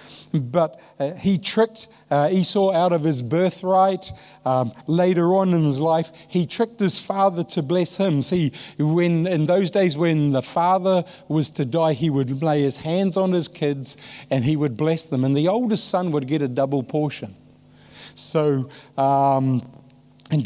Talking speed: 175 wpm